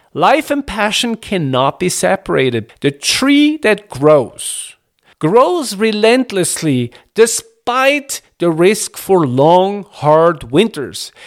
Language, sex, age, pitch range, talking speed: English, male, 50-69, 150-230 Hz, 100 wpm